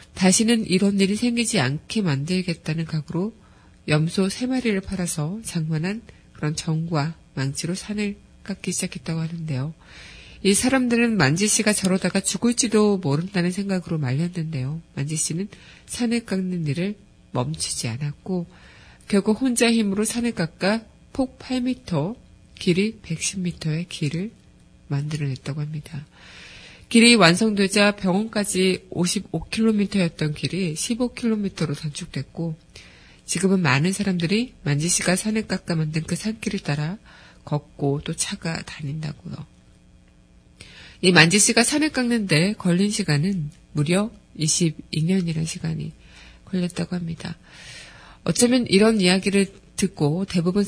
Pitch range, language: 160-205 Hz, Korean